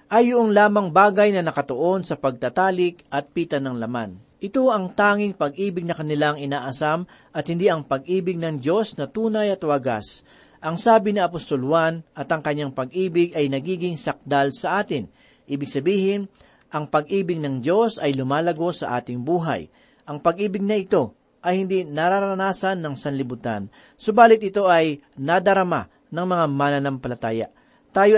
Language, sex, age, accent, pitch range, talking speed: Filipino, male, 40-59, native, 145-195 Hz, 150 wpm